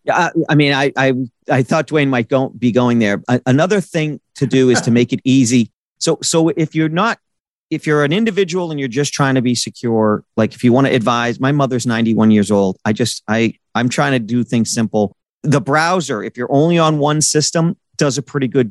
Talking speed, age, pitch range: 225 wpm, 40-59, 115-150 Hz